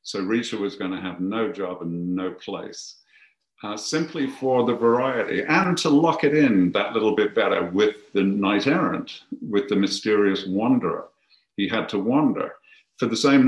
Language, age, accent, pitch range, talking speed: English, 50-69, British, 95-120 Hz, 175 wpm